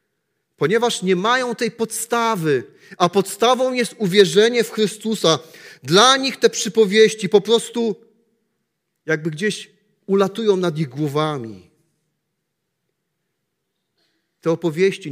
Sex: male